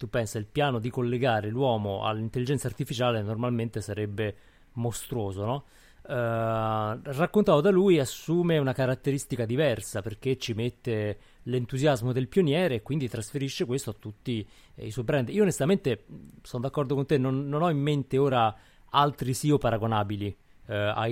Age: 30-49